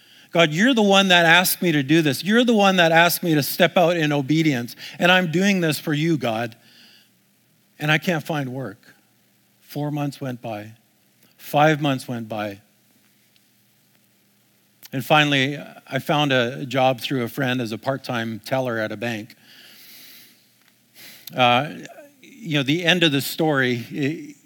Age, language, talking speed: 50-69, English, 160 wpm